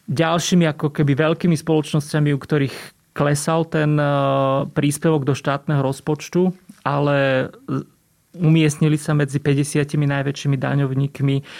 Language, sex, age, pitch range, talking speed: Slovak, male, 30-49, 135-155 Hz, 105 wpm